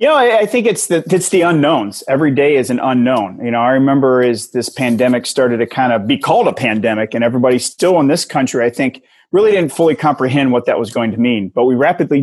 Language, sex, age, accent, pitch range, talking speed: English, male, 30-49, American, 120-145 Hz, 250 wpm